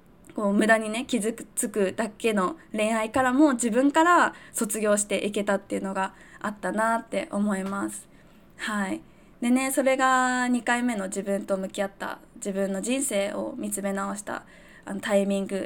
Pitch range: 200-275 Hz